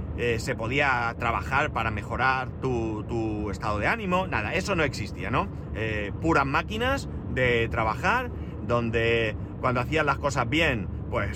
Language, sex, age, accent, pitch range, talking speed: Spanish, male, 30-49, Spanish, 105-145 Hz, 150 wpm